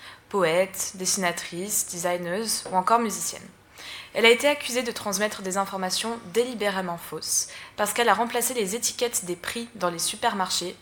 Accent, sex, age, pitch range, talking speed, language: French, female, 20-39, 175-225 Hz, 150 wpm, French